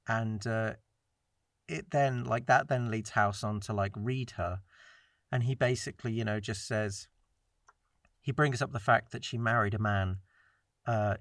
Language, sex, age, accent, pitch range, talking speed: English, male, 40-59, British, 100-120 Hz, 170 wpm